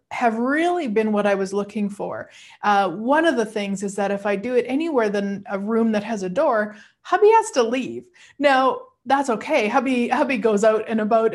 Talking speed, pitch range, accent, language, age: 210 wpm, 210-275 Hz, American, English, 30-49